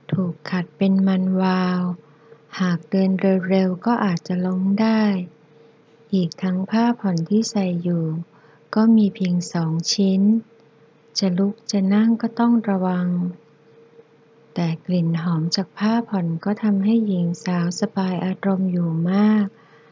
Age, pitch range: 20-39, 160-205 Hz